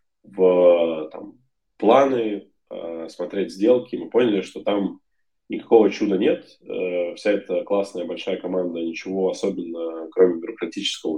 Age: 20-39